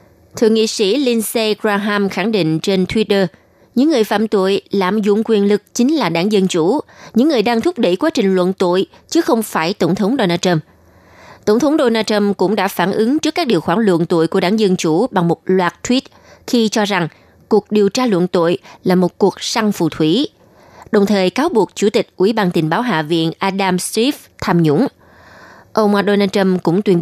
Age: 20-39